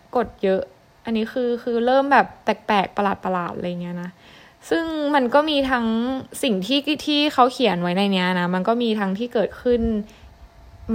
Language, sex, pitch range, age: Thai, female, 185-230 Hz, 20-39